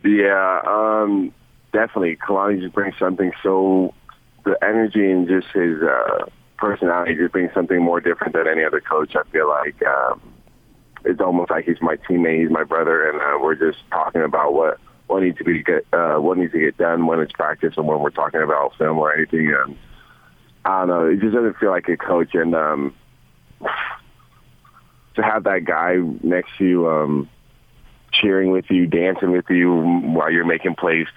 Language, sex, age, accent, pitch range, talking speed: English, male, 30-49, American, 75-90 Hz, 190 wpm